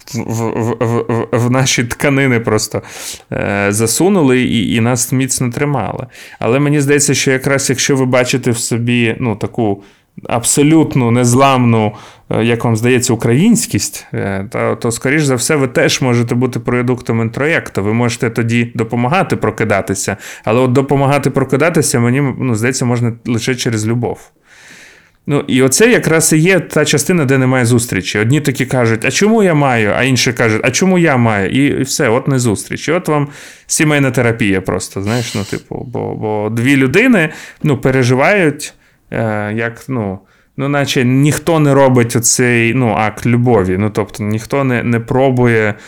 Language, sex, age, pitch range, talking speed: Ukrainian, male, 30-49, 115-140 Hz, 160 wpm